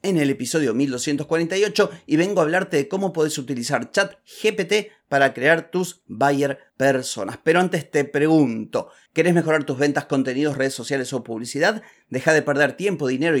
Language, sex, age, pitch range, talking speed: Spanish, male, 30-49, 130-160 Hz, 165 wpm